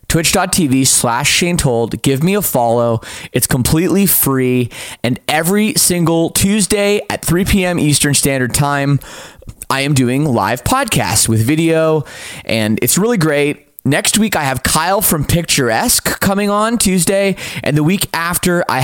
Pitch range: 130-170 Hz